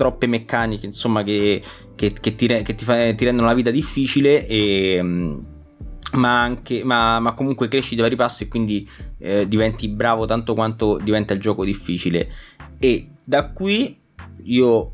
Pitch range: 105-125 Hz